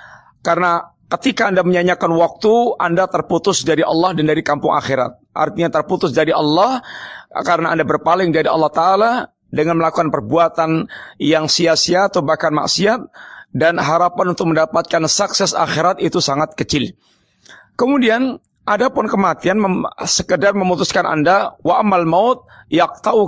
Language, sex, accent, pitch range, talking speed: Indonesian, male, native, 160-195 Hz, 130 wpm